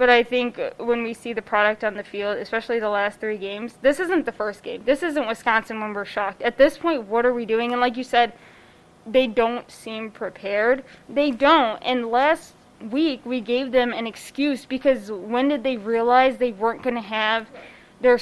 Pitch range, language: 225-265 Hz, English